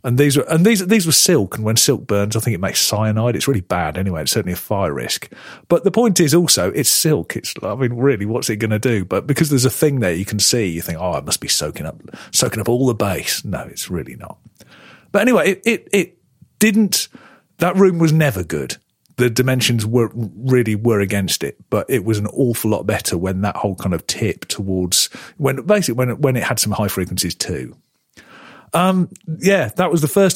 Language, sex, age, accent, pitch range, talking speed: English, male, 40-59, British, 105-160 Hz, 230 wpm